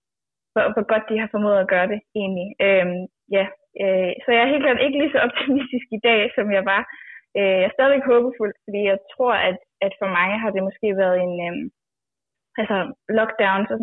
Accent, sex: native, female